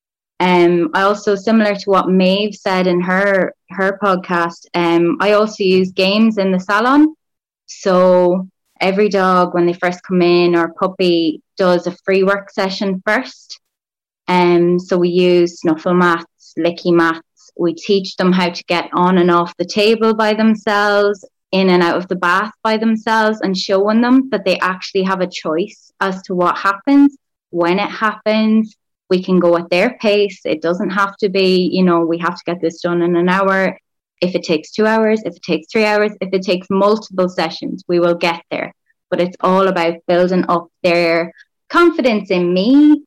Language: English